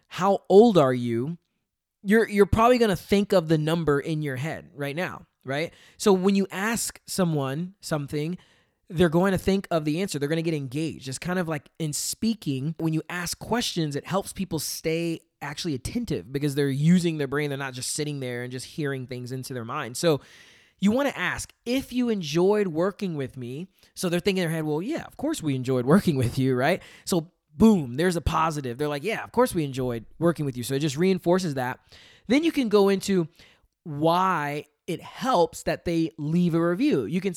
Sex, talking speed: male, 205 wpm